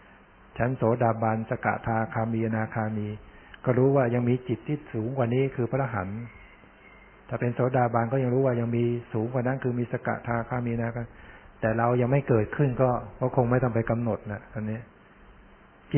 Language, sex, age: Thai, male, 60-79